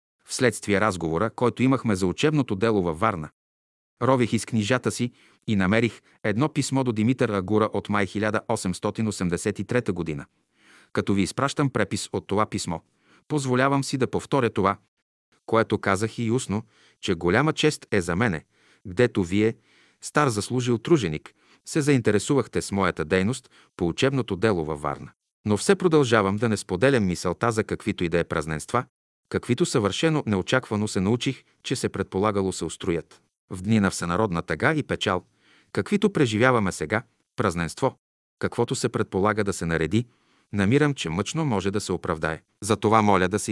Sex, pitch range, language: male, 95-120 Hz, Bulgarian